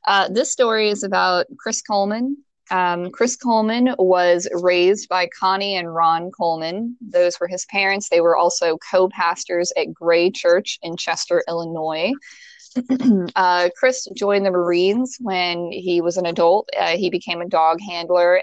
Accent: American